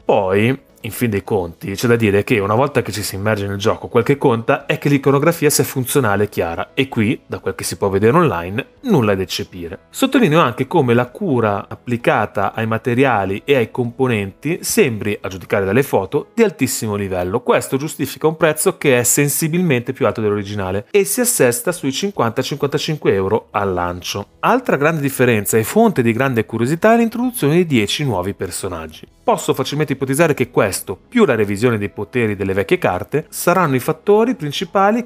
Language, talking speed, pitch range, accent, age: Italian, 185 wpm, 110-175 Hz, native, 30-49